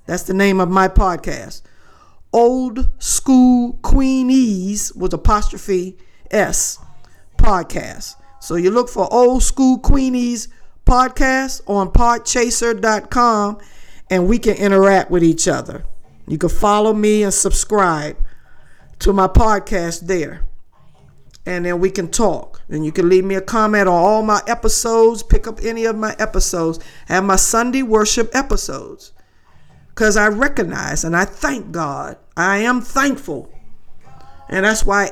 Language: English